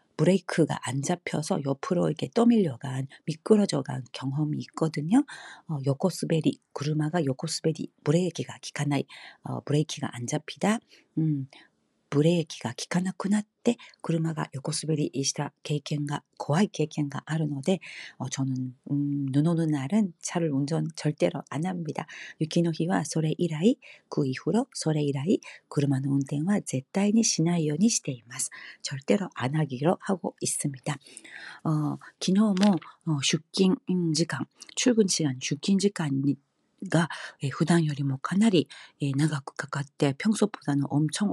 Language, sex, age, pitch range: Korean, female, 40-59, 140-180 Hz